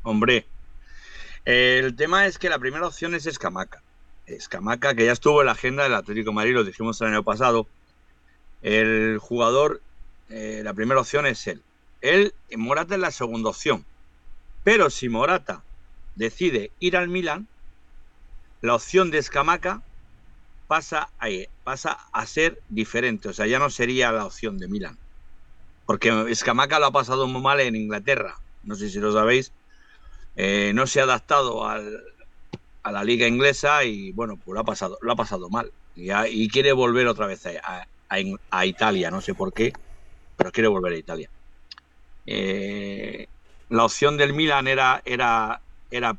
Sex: male